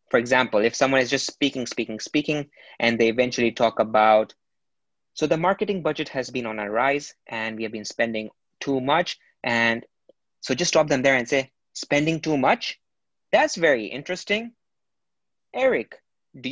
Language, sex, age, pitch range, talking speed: English, male, 20-39, 115-145 Hz, 165 wpm